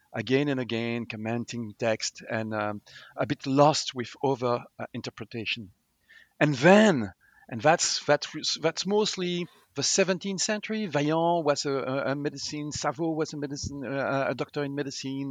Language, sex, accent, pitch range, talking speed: English, male, French, 120-160 Hz, 155 wpm